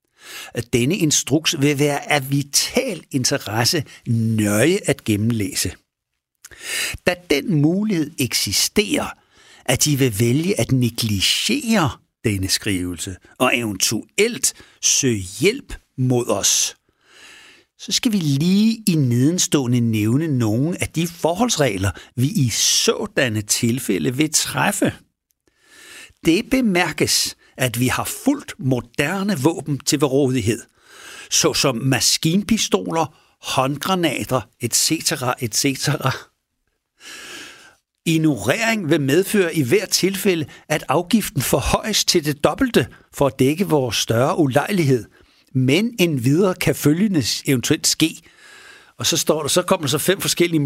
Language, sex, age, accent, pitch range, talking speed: Danish, male, 60-79, native, 125-180 Hz, 115 wpm